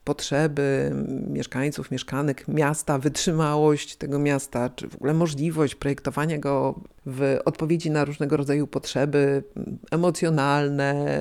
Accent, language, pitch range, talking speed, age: native, Polish, 145-210 Hz, 105 wpm, 50-69